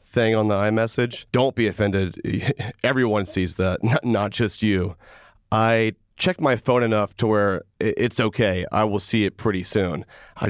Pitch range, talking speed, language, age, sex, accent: 100-120 Hz, 165 wpm, English, 30-49, male, American